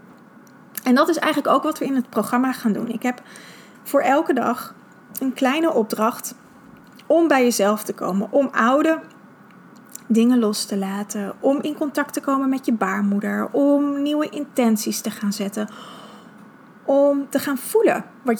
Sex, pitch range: female, 210-255 Hz